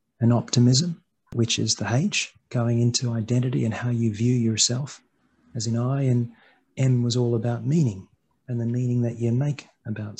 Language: English